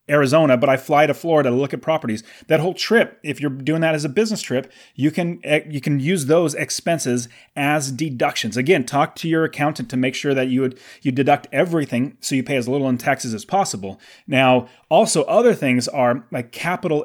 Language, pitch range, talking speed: English, 125-165 Hz, 210 wpm